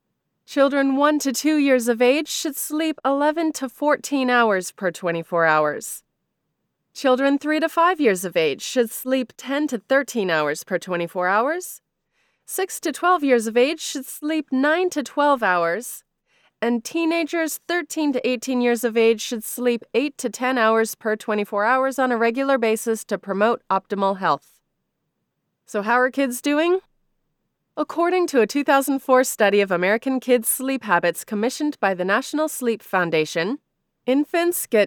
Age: 20-39